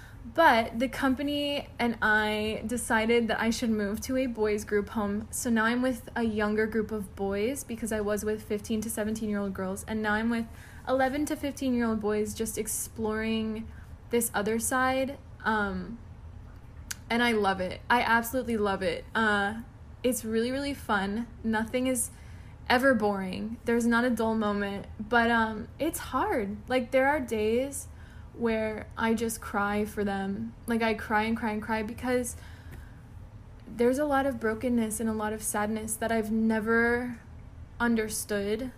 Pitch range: 210-235 Hz